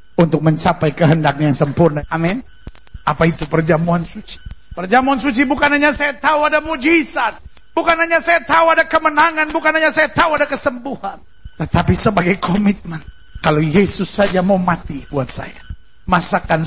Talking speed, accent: 150 wpm, native